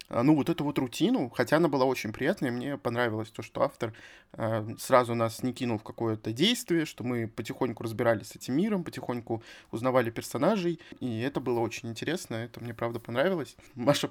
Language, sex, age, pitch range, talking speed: Russian, male, 20-39, 115-145 Hz, 185 wpm